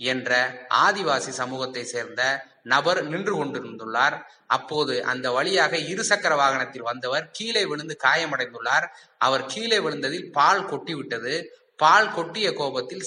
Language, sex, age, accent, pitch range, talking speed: Tamil, male, 20-39, native, 135-190 Hz, 110 wpm